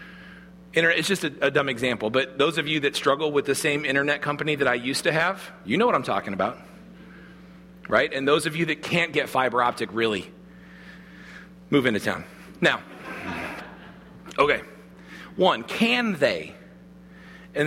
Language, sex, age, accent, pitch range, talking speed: English, male, 40-59, American, 150-220 Hz, 165 wpm